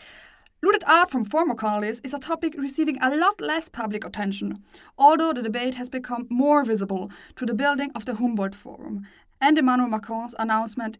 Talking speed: 175 wpm